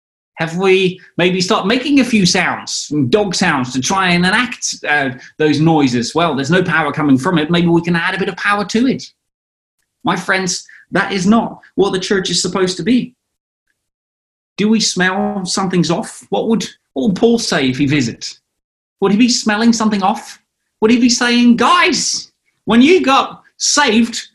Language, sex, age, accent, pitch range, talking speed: English, male, 30-49, British, 155-225 Hz, 180 wpm